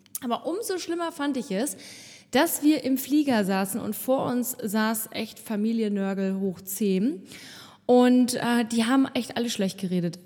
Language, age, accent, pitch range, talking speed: German, 20-39, German, 200-240 Hz, 165 wpm